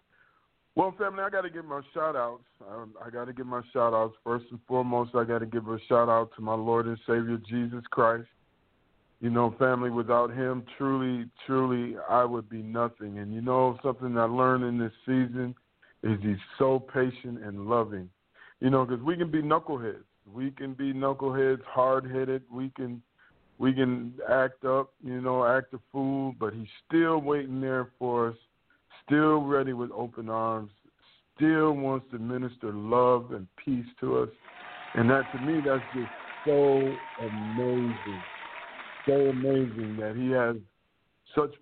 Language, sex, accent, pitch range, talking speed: English, male, American, 115-135 Hz, 165 wpm